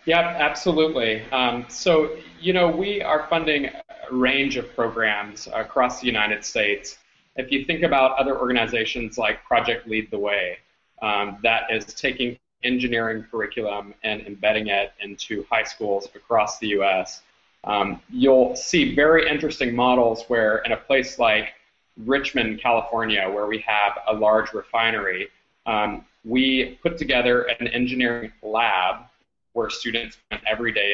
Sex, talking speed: male, 140 wpm